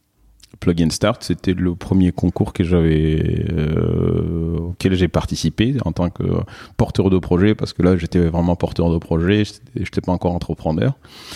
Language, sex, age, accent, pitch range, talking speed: French, male, 30-49, French, 90-105 Hz, 170 wpm